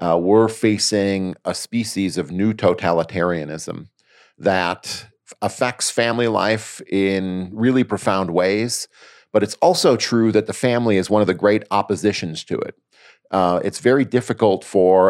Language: English